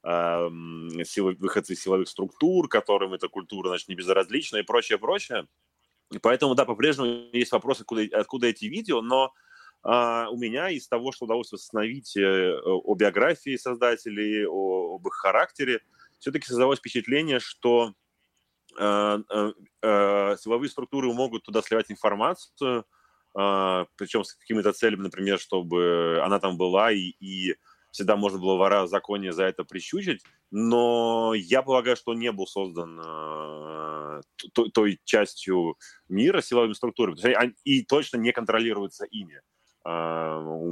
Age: 20-39